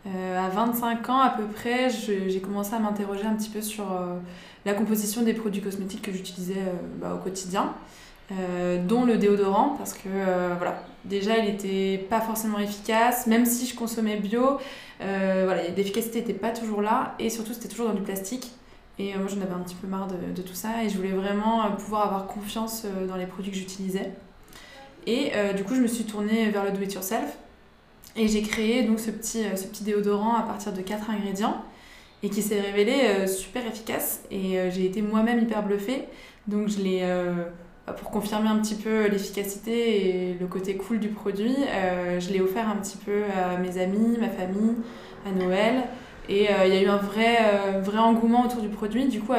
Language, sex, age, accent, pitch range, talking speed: French, female, 20-39, French, 190-225 Hz, 210 wpm